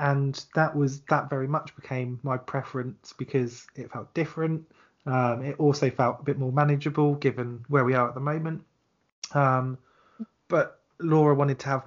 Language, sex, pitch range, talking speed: English, male, 130-150 Hz, 170 wpm